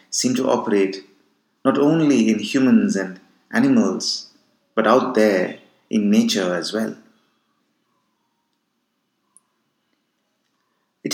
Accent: Indian